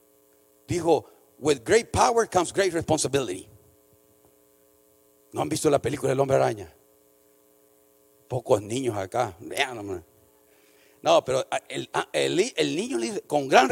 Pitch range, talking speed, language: 135-220 Hz, 115 wpm, Spanish